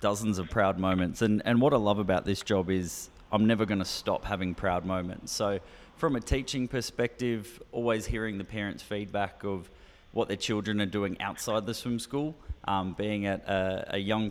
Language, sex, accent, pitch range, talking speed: English, male, Australian, 95-110 Hz, 195 wpm